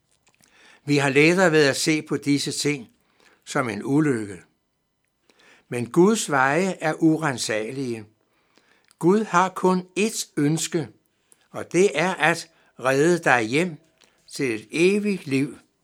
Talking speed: 125 wpm